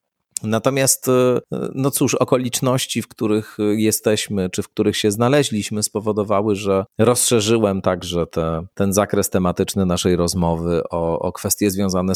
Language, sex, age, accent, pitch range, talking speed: Polish, male, 40-59, native, 85-105 Hz, 125 wpm